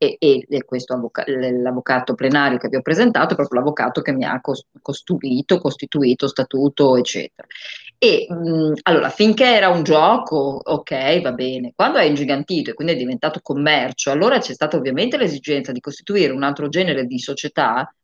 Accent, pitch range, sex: native, 130-170 Hz, female